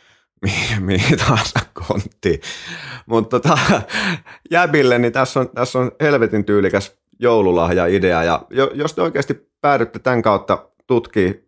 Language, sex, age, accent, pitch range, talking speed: Finnish, male, 30-49, native, 80-105 Hz, 105 wpm